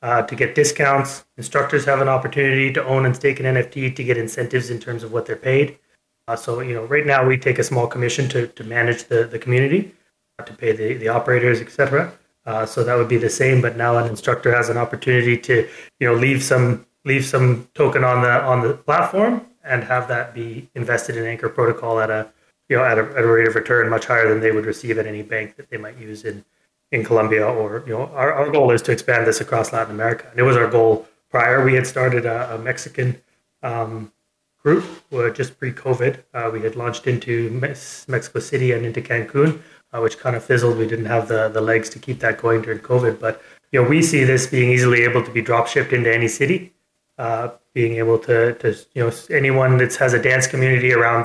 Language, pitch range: English, 115-130 Hz